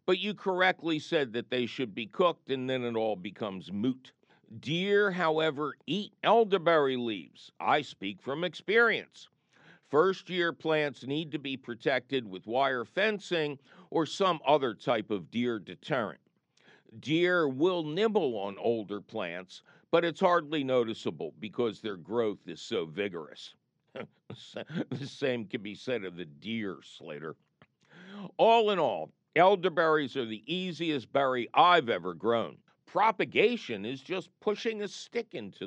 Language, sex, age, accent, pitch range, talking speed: English, male, 60-79, American, 120-185 Hz, 140 wpm